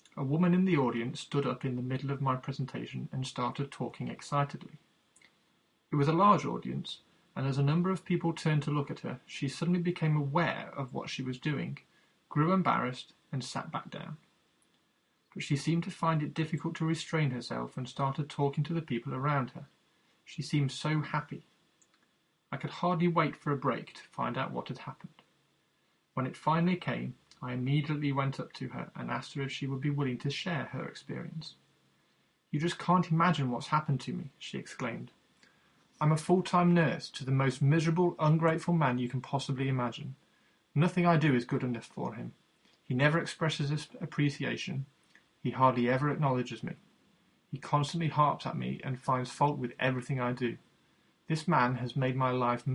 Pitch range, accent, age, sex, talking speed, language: 130-165 Hz, British, 30-49, male, 185 wpm, English